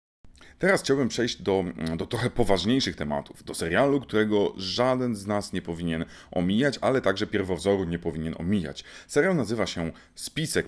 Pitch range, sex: 85-105 Hz, male